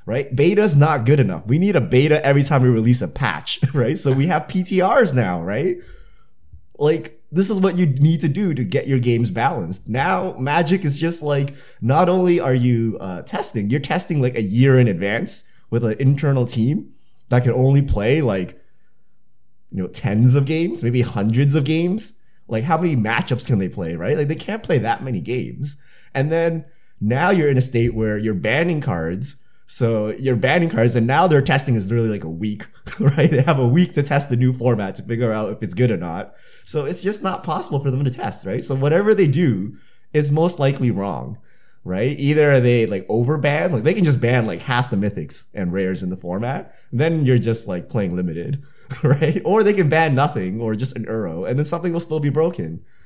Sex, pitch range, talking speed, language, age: male, 115-160 Hz, 215 wpm, English, 20-39